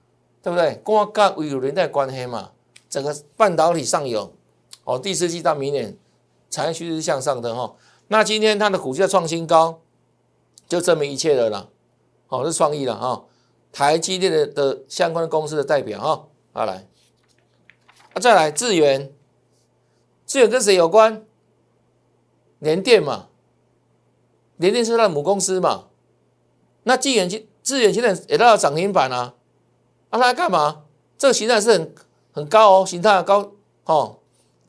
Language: Chinese